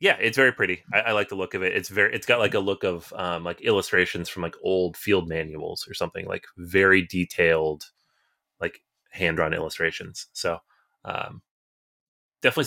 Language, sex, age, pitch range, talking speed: English, male, 30-49, 90-120 Hz, 180 wpm